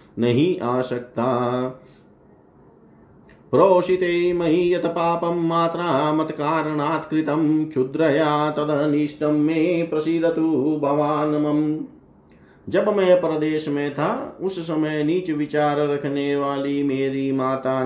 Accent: native